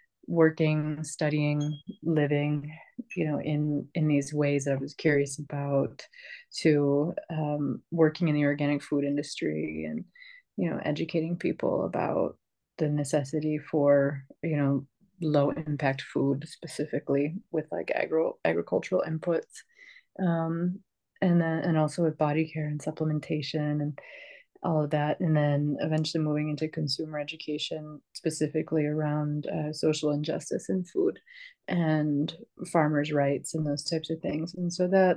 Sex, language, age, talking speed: female, English, 30-49, 140 wpm